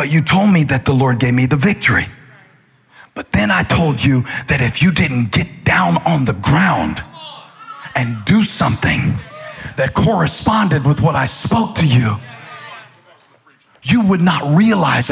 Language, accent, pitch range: English, American, 175-260 Hz